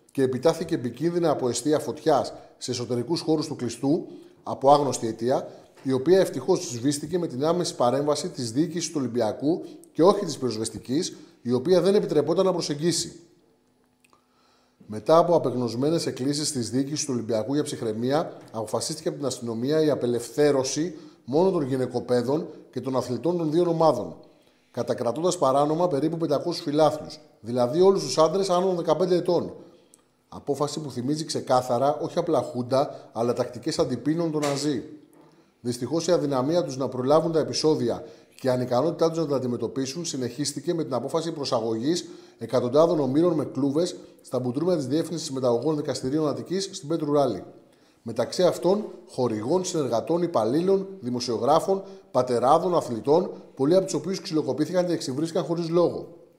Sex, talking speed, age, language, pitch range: male, 145 wpm, 30-49, Greek, 125-170 Hz